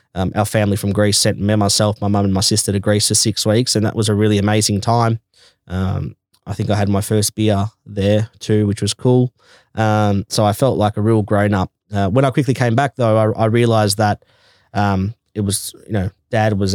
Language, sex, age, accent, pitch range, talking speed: English, male, 20-39, Australian, 100-110 Hz, 230 wpm